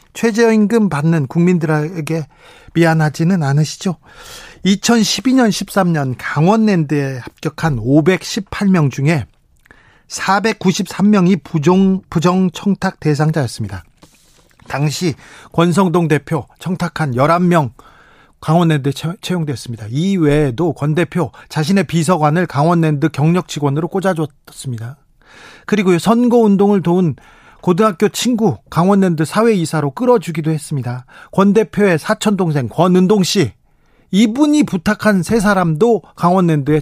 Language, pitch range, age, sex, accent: Korean, 150-195 Hz, 40-59, male, native